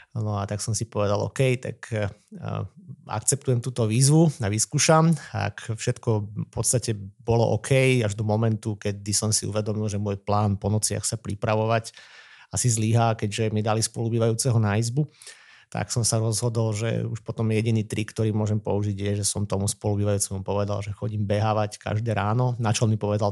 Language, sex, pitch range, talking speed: Slovak, male, 105-120 Hz, 185 wpm